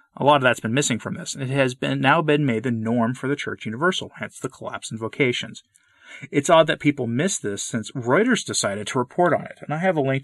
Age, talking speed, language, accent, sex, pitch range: 30-49, 250 wpm, English, American, male, 110-135 Hz